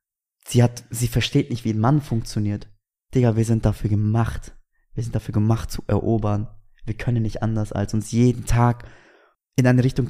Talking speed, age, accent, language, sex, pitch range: 185 wpm, 20-39, German, German, male, 110-130 Hz